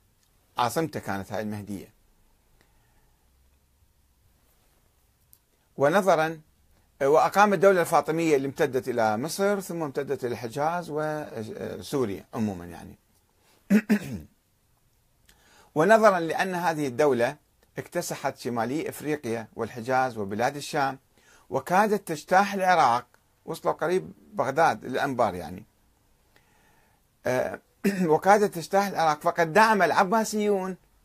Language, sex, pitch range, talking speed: Arabic, male, 110-180 Hz, 85 wpm